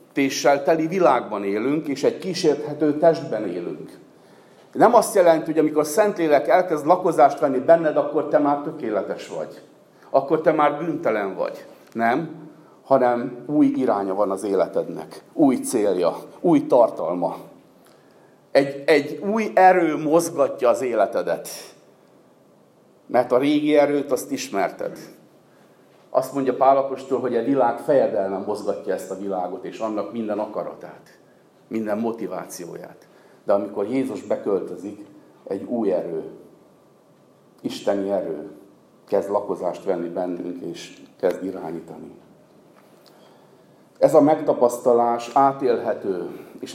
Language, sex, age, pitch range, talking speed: Hungarian, male, 50-69, 120-155 Hz, 120 wpm